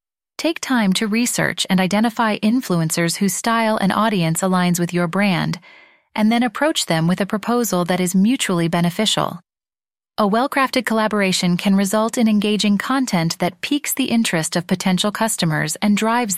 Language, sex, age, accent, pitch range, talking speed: English, female, 30-49, American, 180-245 Hz, 160 wpm